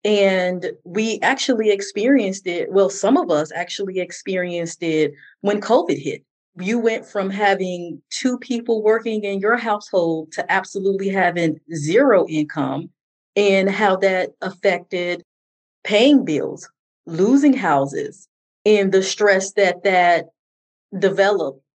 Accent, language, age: American, English, 30-49